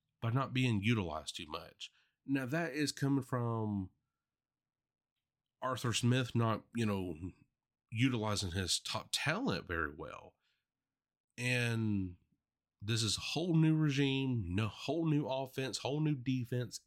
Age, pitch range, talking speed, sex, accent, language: 30-49, 105-135 Hz, 130 wpm, male, American, English